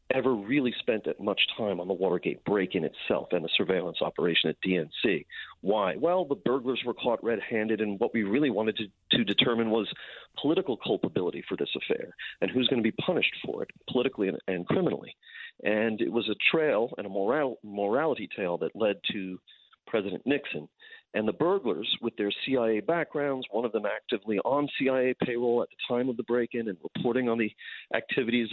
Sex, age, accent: male, 40-59, American